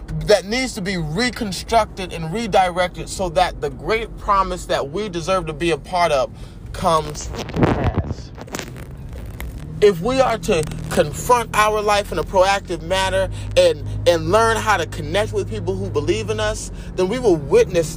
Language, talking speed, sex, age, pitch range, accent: English, 165 wpm, male, 30-49, 175-235 Hz, American